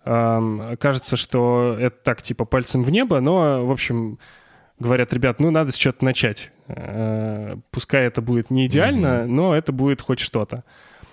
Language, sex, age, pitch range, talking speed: Russian, male, 10-29, 115-135 Hz, 150 wpm